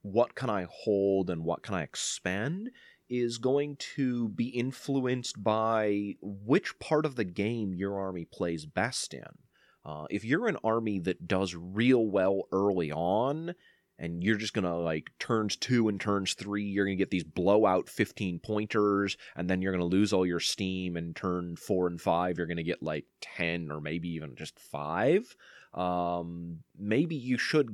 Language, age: English, 30-49